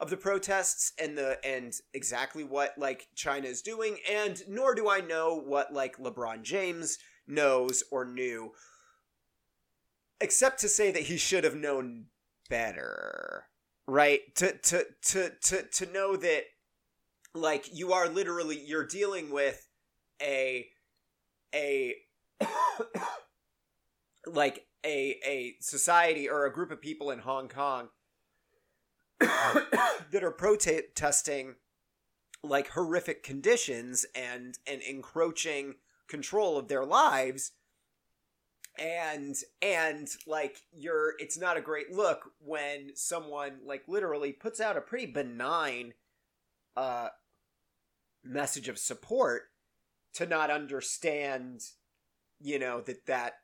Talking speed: 115 wpm